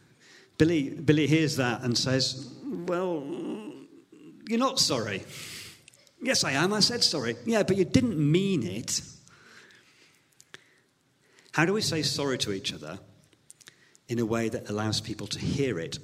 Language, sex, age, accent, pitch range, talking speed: English, male, 50-69, British, 110-150 Hz, 145 wpm